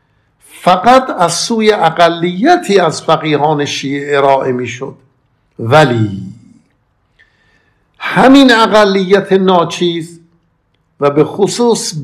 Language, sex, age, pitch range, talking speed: Persian, male, 50-69, 155-200 Hz, 80 wpm